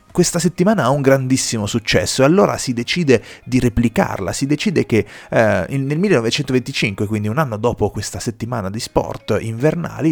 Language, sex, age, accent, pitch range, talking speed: Italian, male, 30-49, native, 100-135 Hz, 155 wpm